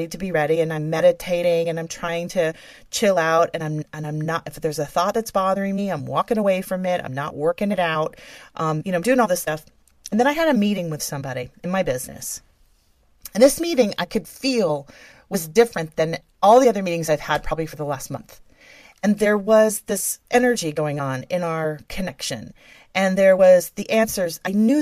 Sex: female